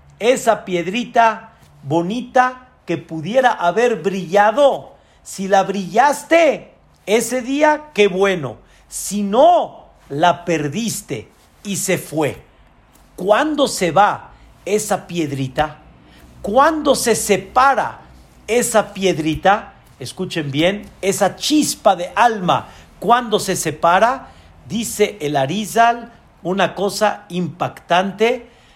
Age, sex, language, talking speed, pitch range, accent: 50-69, male, Spanish, 95 wpm, 160-230 Hz, Mexican